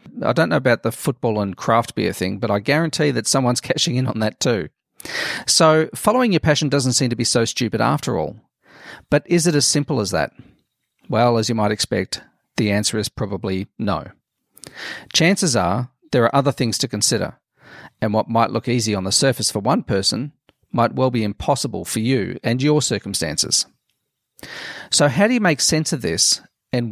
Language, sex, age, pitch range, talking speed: English, male, 40-59, 105-145 Hz, 190 wpm